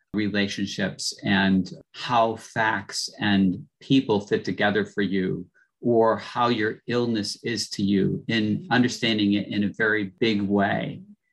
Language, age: English, 40-59